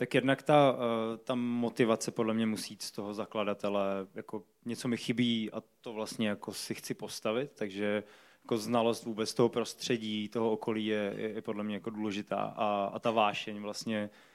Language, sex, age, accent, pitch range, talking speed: Czech, male, 20-39, native, 105-115 Hz, 175 wpm